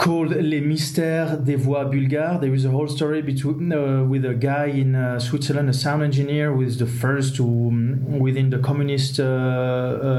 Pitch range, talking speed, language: 125-145 Hz, 190 wpm, English